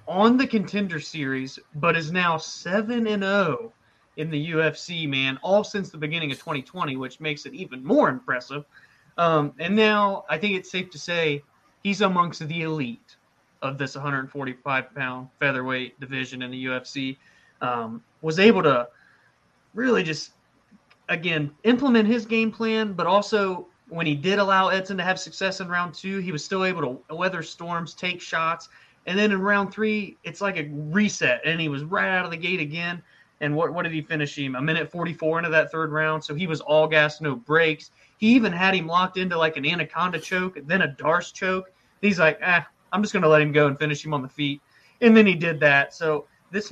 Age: 30-49